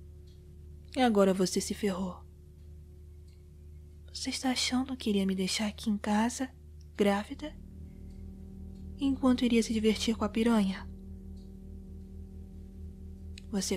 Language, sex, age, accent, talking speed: Portuguese, female, 20-39, Brazilian, 105 wpm